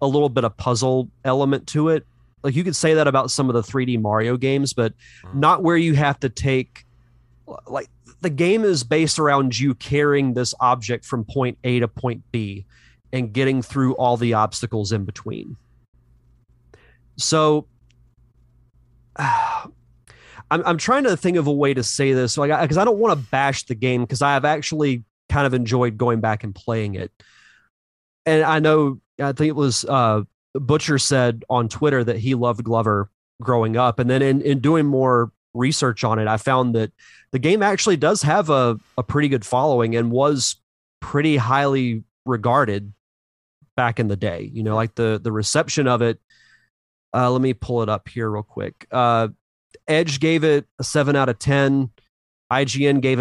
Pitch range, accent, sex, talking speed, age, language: 115-140 Hz, American, male, 185 wpm, 30-49, English